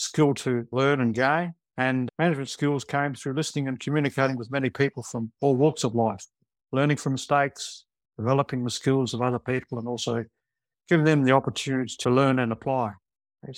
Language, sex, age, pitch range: English, male, 60-79, 120-140 Hz